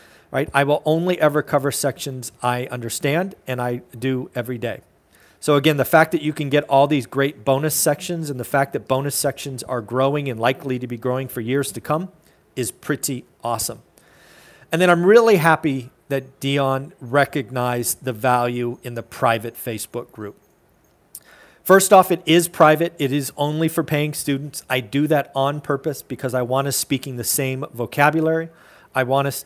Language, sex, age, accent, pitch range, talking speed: English, male, 40-59, American, 125-155 Hz, 180 wpm